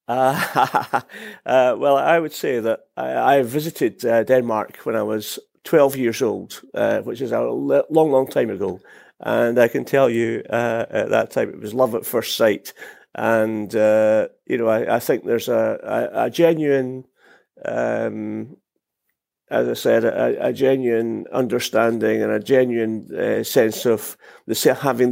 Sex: male